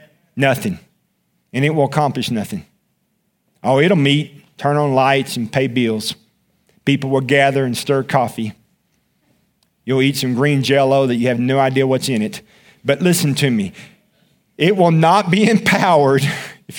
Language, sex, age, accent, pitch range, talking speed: English, male, 50-69, American, 135-200 Hz, 155 wpm